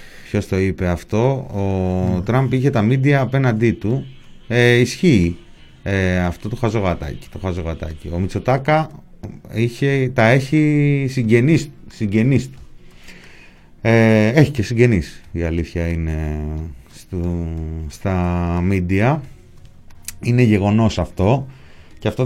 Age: 30-49